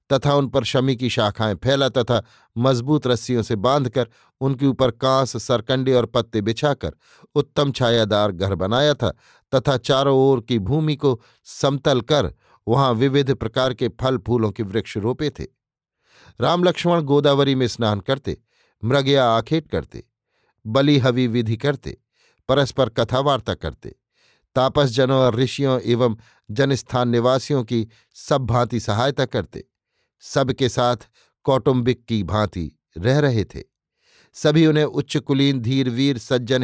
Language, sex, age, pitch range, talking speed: Hindi, male, 50-69, 115-140 Hz, 135 wpm